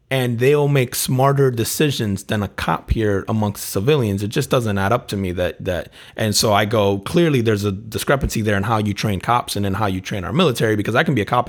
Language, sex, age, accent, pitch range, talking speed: English, male, 30-49, American, 100-130 Hz, 245 wpm